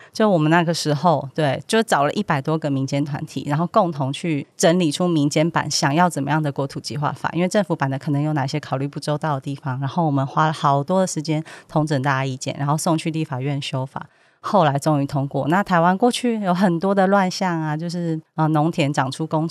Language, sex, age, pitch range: Chinese, female, 30-49, 145-185 Hz